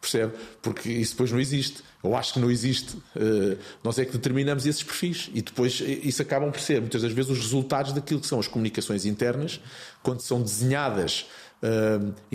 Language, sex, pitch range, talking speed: Portuguese, male, 105-125 Hz, 185 wpm